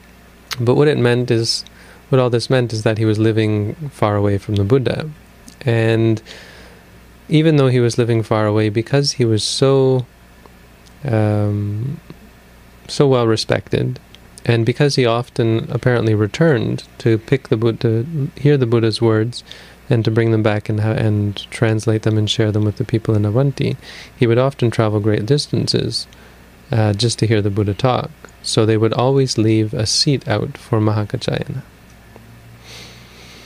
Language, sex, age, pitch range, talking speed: English, male, 30-49, 100-120 Hz, 160 wpm